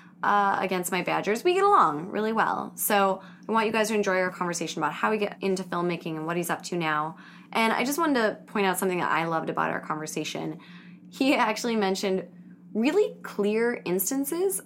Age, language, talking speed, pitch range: 20-39, English, 205 wpm, 170-205 Hz